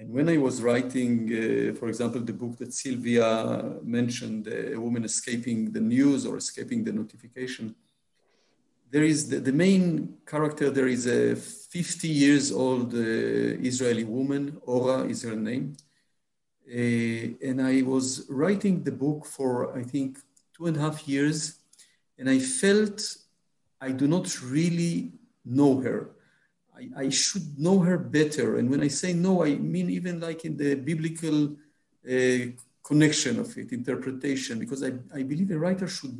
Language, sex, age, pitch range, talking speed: Slovak, male, 50-69, 125-170 Hz, 160 wpm